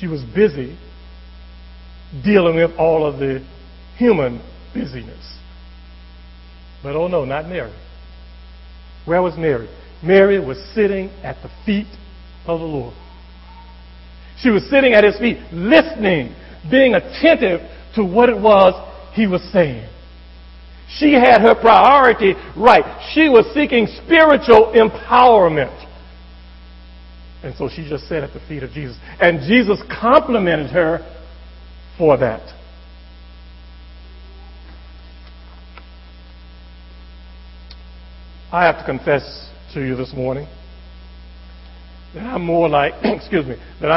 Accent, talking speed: American, 115 wpm